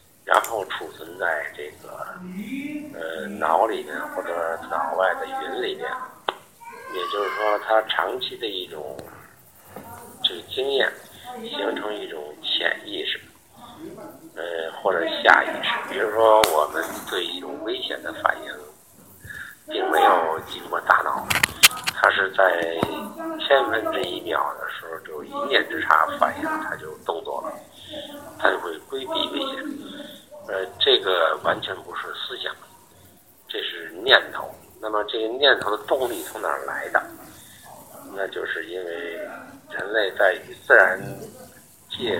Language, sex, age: Chinese, male, 50-69